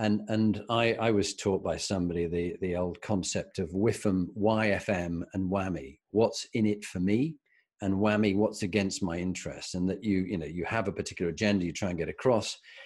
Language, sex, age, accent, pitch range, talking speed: English, male, 40-59, British, 90-105 Hz, 200 wpm